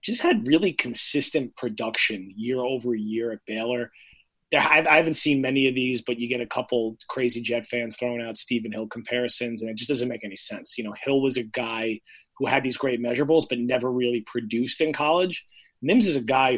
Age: 30-49